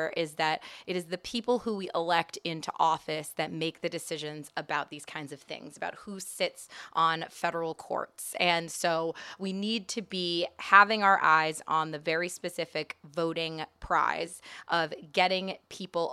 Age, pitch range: 20-39, 165-200 Hz